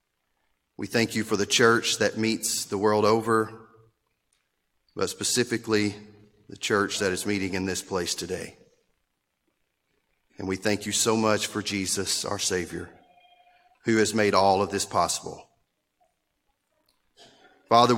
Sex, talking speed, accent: male, 135 wpm, American